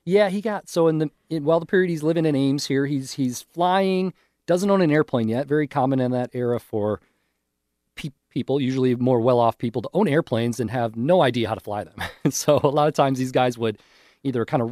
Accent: American